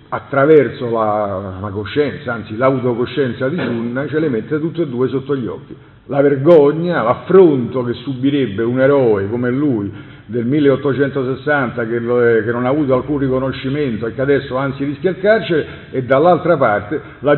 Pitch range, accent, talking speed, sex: 115-145 Hz, native, 165 wpm, male